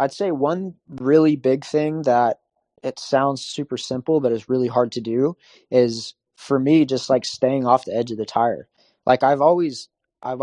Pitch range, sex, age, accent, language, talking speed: 120-140 Hz, male, 20-39, American, English, 190 wpm